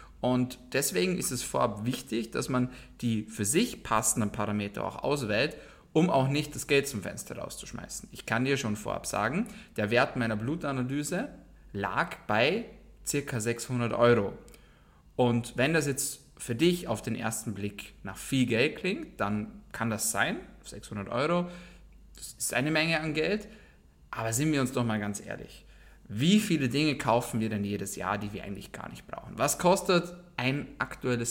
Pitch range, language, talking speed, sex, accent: 110-145 Hz, German, 170 wpm, male, German